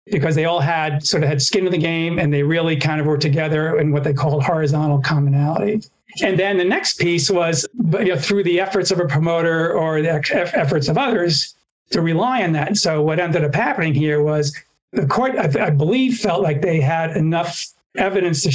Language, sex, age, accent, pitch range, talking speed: English, male, 50-69, American, 150-180 Hz, 215 wpm